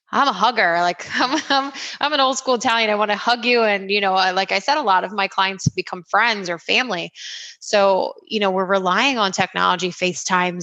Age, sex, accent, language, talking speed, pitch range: 20-39, female, American, English, 215 wpm, 175-200 Hz